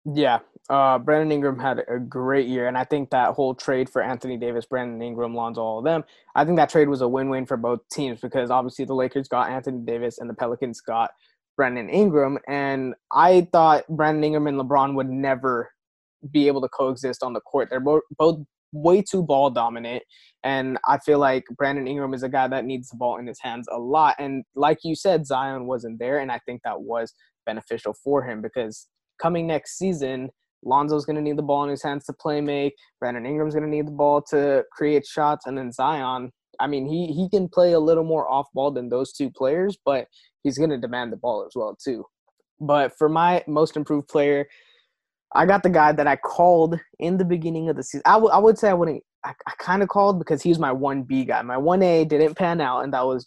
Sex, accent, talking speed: male, American, 225 wpm